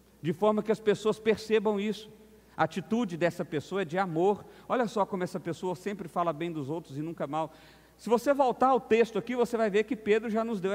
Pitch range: 150-220 Hz